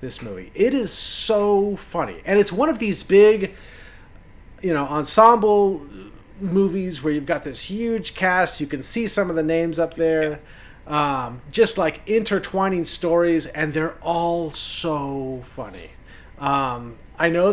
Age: 40-59